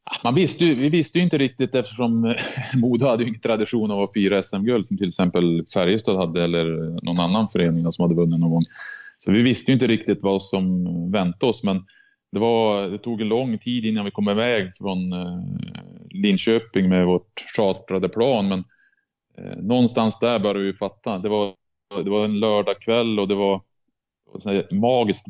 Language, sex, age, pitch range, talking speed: Swedish, male, 20-39, 90-110 Hz, 180 wpm